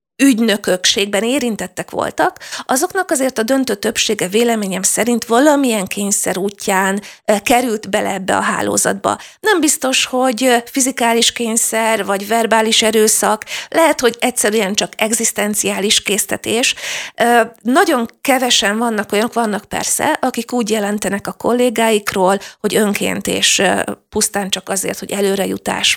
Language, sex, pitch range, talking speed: Hungarian, female, 205-250 Hz, 120 wpm